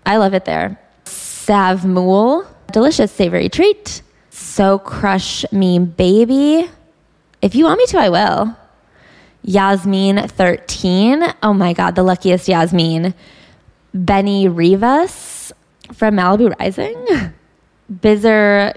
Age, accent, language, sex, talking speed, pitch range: 20-39, American, English, female, 105 wpm, 190-250 Hz